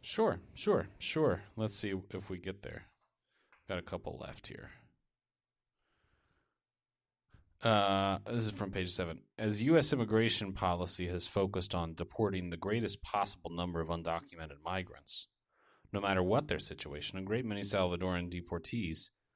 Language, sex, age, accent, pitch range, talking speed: English, male, 30-49, American, 90-110 Hz, 140 wpm